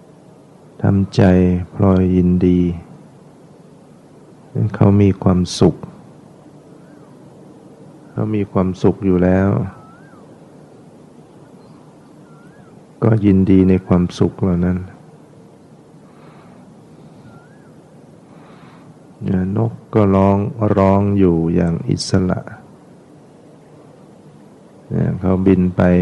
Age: 60-79